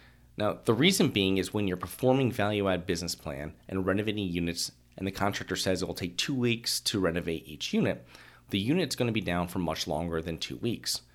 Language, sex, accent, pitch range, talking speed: English, male, American, 85-110 Hz, 210 wpm